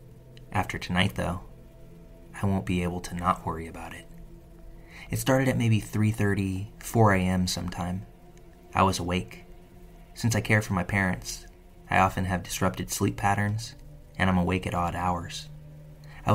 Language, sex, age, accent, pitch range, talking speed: English, male, 20-39, American, 90-115 Hz, 155 wpm